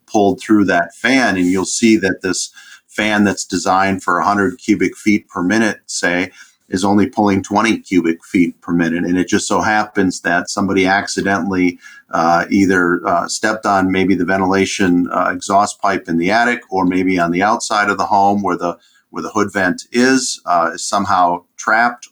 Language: English